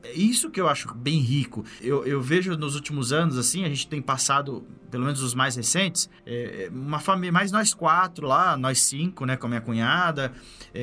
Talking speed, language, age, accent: 200 wpm, Portuguese, 20-39, Brazilian